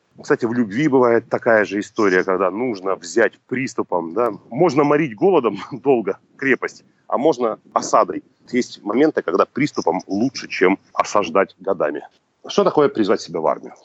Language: Russian